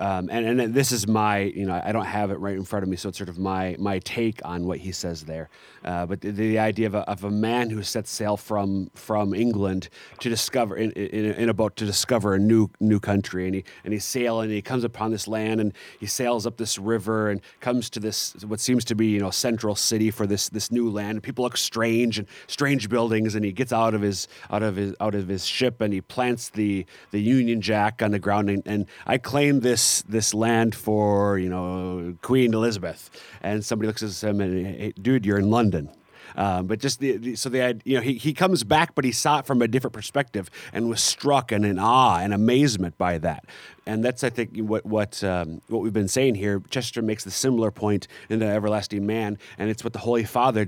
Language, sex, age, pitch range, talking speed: English, male, 30-49, 100-115 Hz, 240 wpm